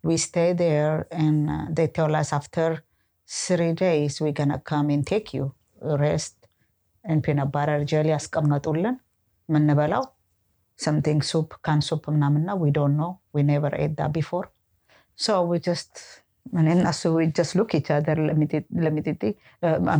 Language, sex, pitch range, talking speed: English, female, 150-210 Hz, 150 wpm